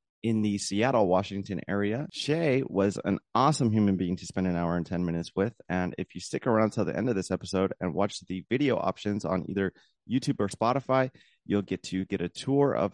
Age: 30-49